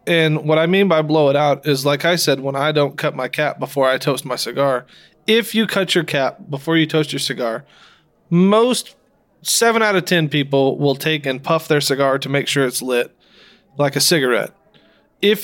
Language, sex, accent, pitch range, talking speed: English, male, American, 140-180 Hz, 210 wpm